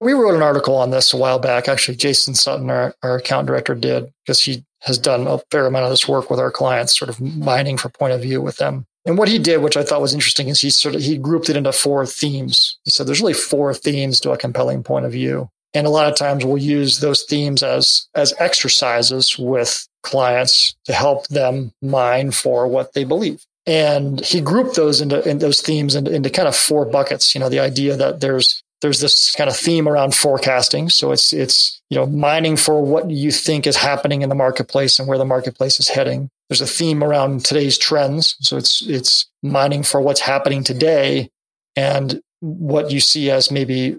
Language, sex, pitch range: English, male, 130-150 Hz